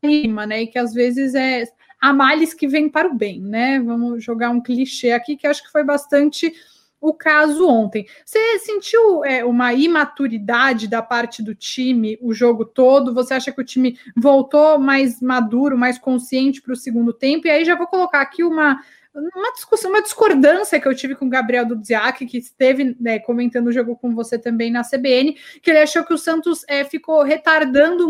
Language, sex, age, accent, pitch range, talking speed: Portuguese, female, 20-39, Brazilian, 245-300 Hz, 190 wpm